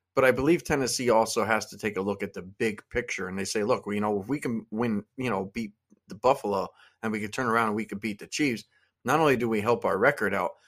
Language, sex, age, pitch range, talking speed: English, male, 20-39, 105-120 Hz, 270 wpm